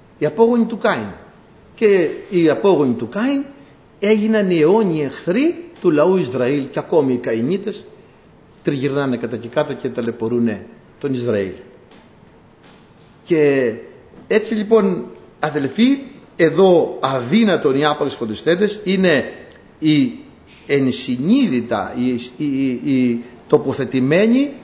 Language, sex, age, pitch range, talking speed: Greek, male, 60-79, 135-210 Hz, 105 wpm